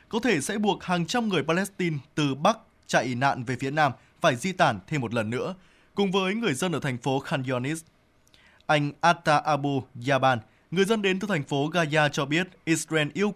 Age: 20-39